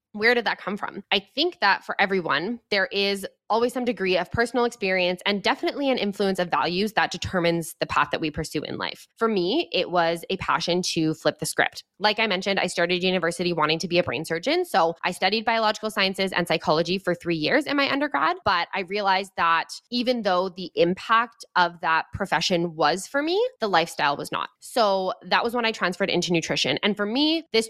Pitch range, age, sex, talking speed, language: 165-215 Hz, 20-39, female, 210 wpm, English